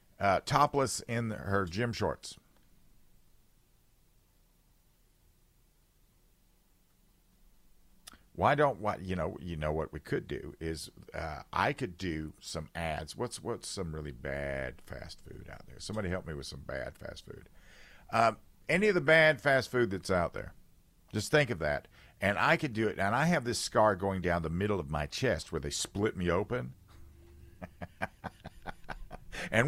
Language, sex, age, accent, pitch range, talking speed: English, male, 50-69, American, 80-125 Hz, 160 wpm